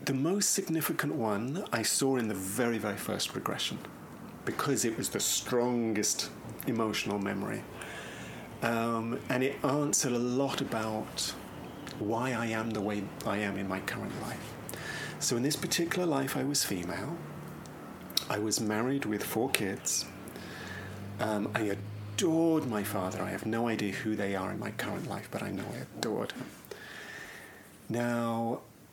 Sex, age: male, 40-59